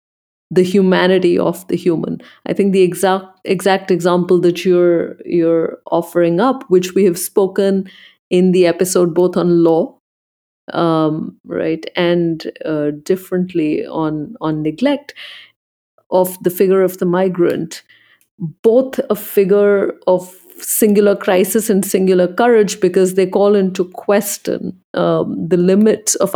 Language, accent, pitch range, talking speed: English, Indian, 180-225 Hz, 130 wpm